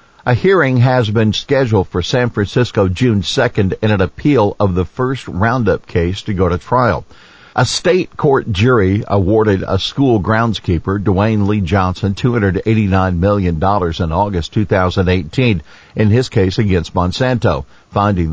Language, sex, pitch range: English, male, 90-110 Hz